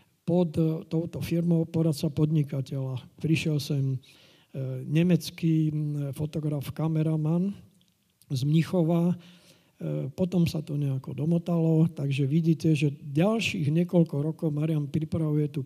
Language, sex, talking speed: Slovak, male, 100 wpm